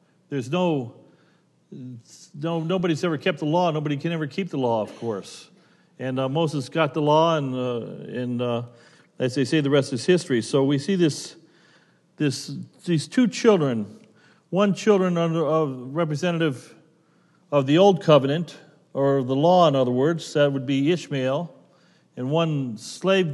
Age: 40-59